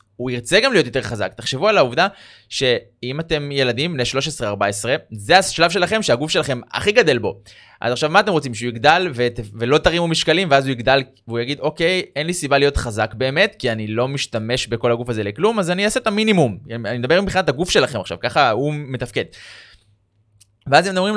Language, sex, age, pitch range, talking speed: Hebrew, male, 20-39, 115-165 Hz, 200 wpm